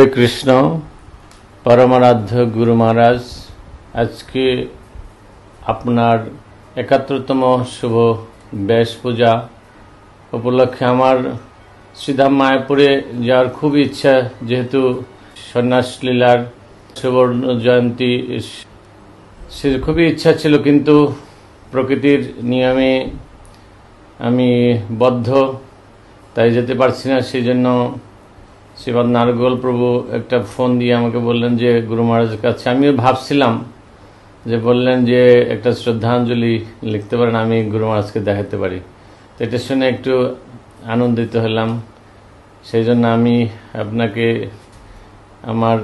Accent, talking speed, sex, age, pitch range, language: Indian, 80 wpm, male, 50-69, 105-125 Hz, English